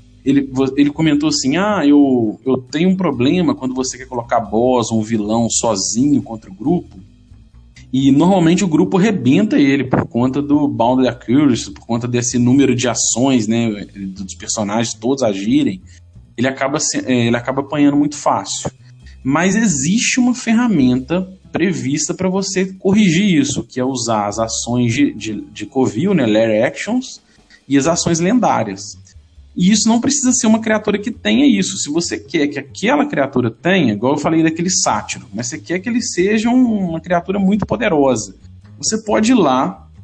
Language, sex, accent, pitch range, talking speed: Portuguese, male, Brazilian, 115-175 Hz, 170 wpm